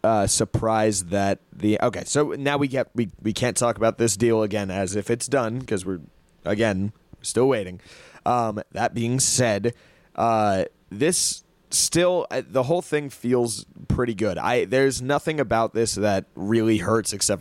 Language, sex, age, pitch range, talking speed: English, male, 20-39, 105-125 Hz, 170 wpm